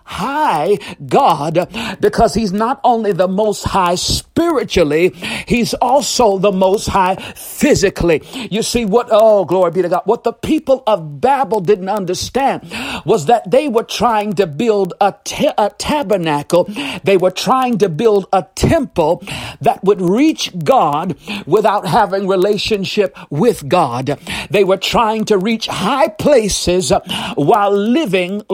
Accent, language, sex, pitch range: American, English, male, 180-230 Hz